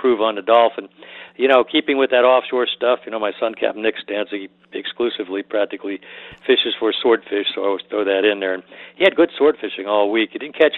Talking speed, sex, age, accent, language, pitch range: 230 wpm, male, 60-79, American, English, 105-140 Hz